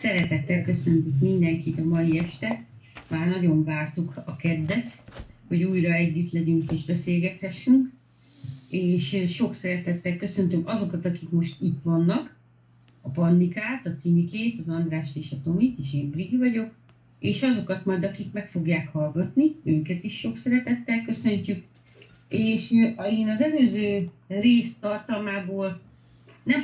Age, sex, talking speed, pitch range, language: 30-49, female, 130 wpm, 155-195 Hz, Hungarian